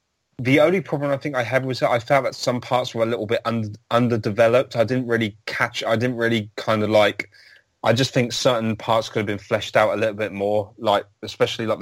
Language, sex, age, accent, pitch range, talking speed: English, male, 30-49, British, 100-120 Hz, 240 wpm